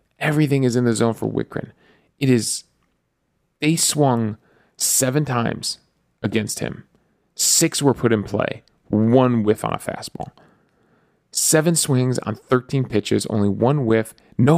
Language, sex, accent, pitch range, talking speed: English, male, American, 115-145 Hz, 140 wpm